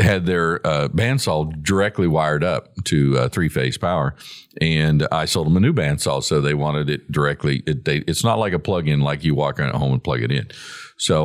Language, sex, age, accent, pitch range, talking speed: English, male, 50-69, American, 80-100 Hz, 220 wpm